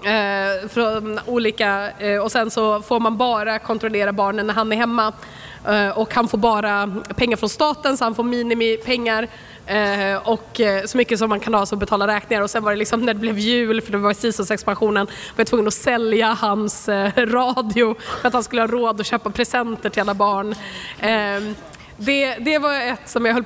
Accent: Swedish